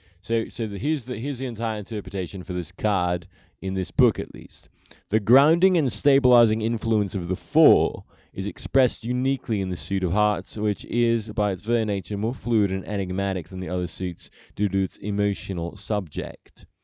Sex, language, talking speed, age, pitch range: male, English, 185 wpm, 20-39, 95-125 Hz